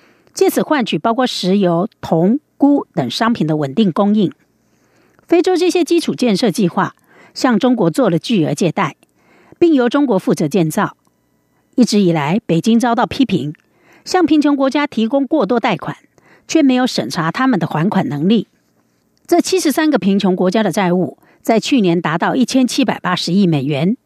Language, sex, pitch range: Chinese, female, 180-260 Hz